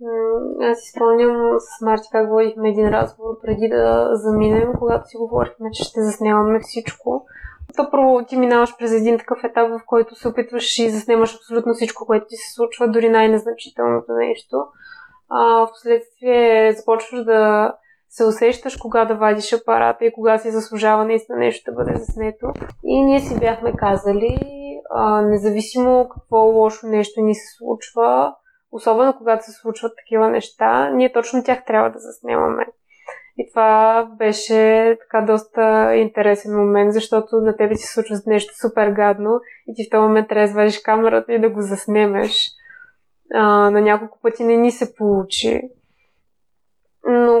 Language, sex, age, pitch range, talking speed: Bulgarian, female, 20-39, 215-235 Hz, 150 wpm